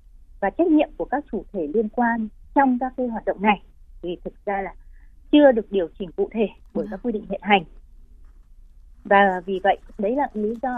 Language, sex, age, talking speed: Vietnamese, female, 20-39, 210 wpm